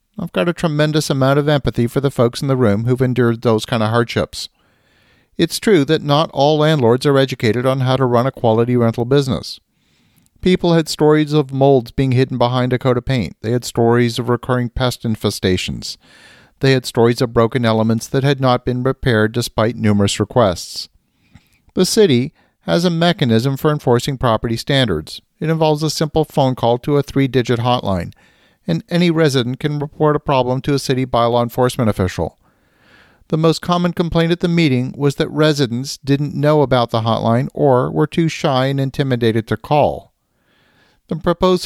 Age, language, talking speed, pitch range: 50-69, English, 180 wpm, 120-150 Hz